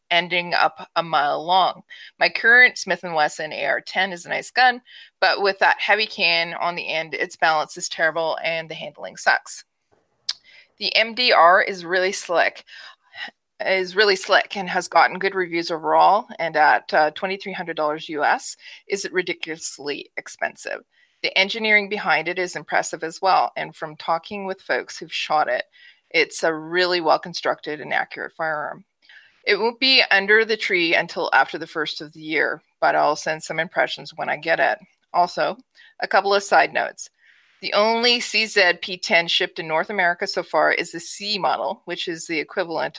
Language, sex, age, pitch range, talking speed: English, female, 30-49, 165-205 Hz, 175 wpm